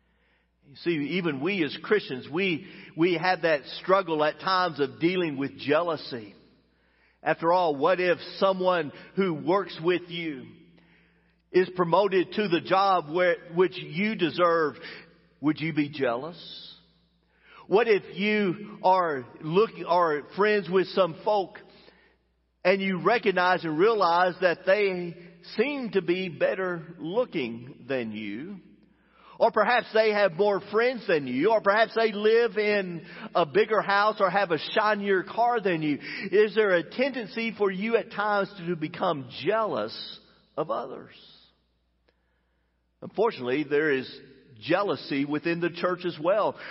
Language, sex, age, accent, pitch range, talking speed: English, male, 50-69, American, 160-200 Hz, 140 wpm